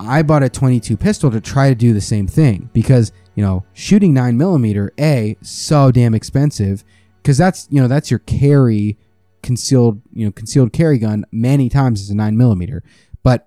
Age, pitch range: 20-39, 110-140 Hz